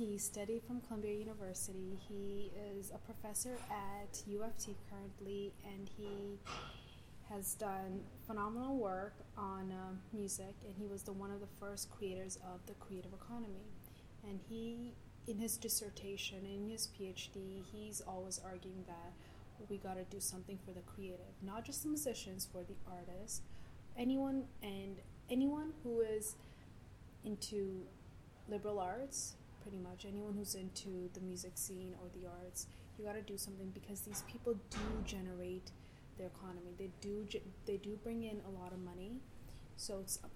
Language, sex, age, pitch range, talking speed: English, female, 20-39, 185-210 Hz, 155 wpm